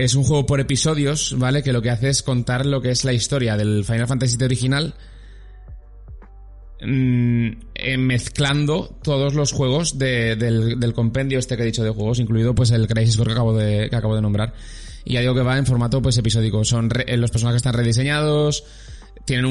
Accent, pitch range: Spanish, 110-130 Hz